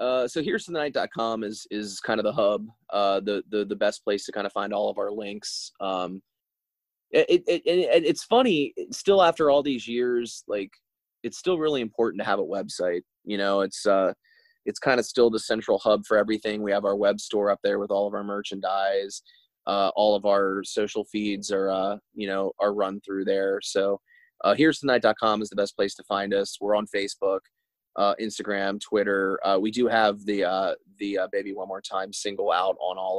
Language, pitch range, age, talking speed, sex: English, 100-125 Hz, 20-39, 215 wpm, male